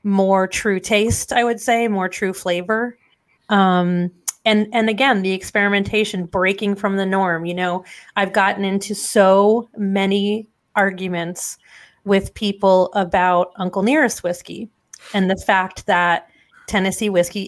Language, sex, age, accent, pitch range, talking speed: English, female, 30-49, American, 190-225 Hz, 135 wpm